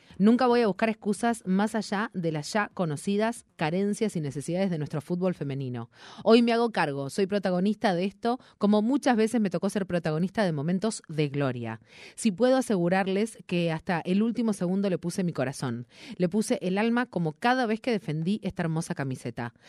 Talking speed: 185 wpm